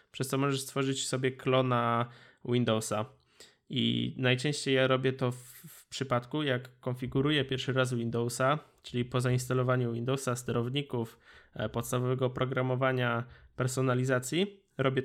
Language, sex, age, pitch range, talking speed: Polish, male, 20-39, 125-140 Hz, 120 wpm